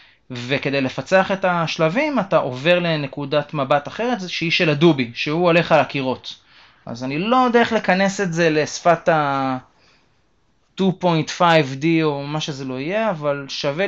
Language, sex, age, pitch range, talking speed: Hebrew, male, 20-39, 130-170 Hz, 145 wpm